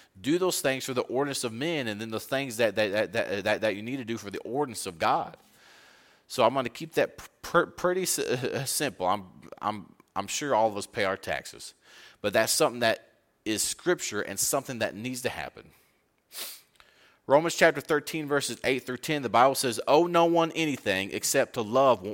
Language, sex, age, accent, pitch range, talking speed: English, male, 30-49, American, 110-155 Hz, 205 wpm